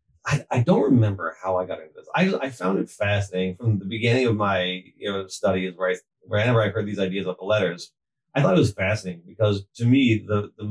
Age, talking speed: 30-49, 230 wpm